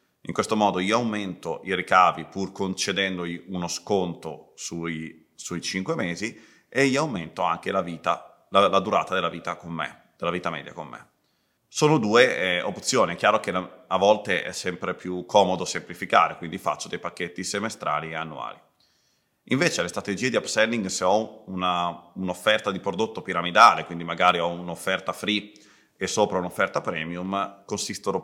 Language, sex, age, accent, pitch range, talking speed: Italian, male, 30-49, native, 85-100 Hz, 160 wpm